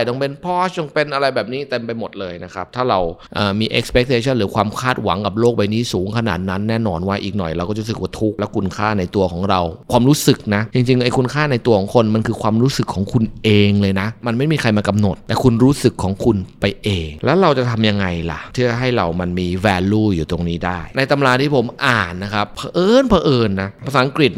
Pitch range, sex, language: 100-120 Hz, male, Thai